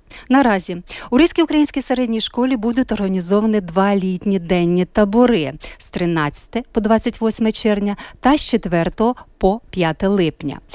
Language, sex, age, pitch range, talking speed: Ukrainian, female, 50-69, 175-235 Hz, 130 wpm